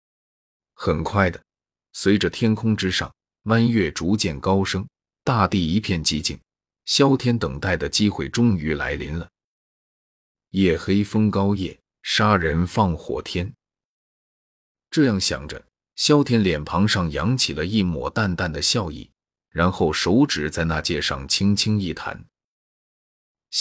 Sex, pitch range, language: male, 85-105 Hz, Chinese